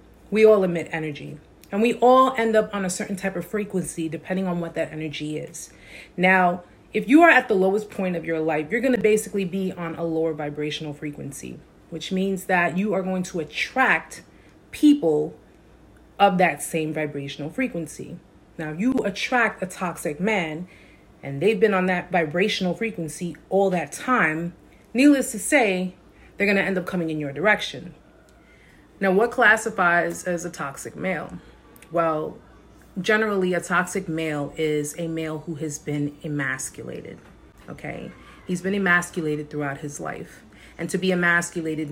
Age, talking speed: 30-49, 165 wpm